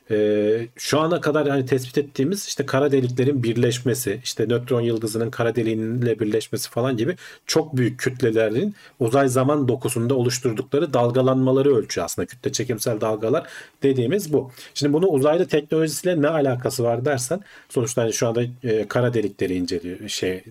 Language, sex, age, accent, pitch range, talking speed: Turkish, male, 40-59, native, 110-135 Hz, 150 wpm